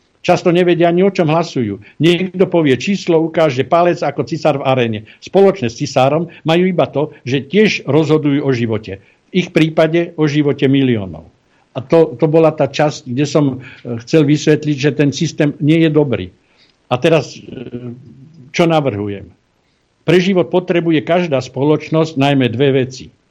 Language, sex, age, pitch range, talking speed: Slovak, male, 60-79, 125-160 Hz, 155 wpm